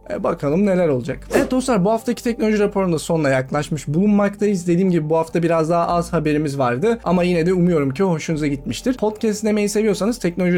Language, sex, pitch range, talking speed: Turkish, male, 145-195 Hz, 185 wpm